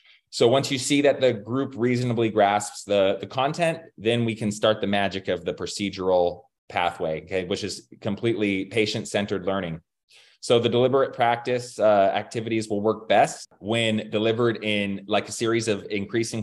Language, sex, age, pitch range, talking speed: English, male, 20-39, 100-120 Hz, 165 wpm